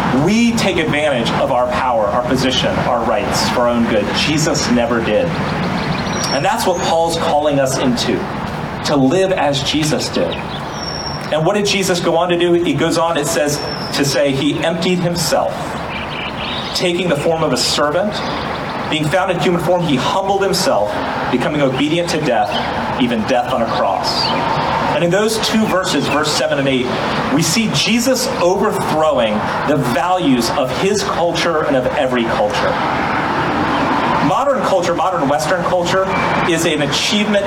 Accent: American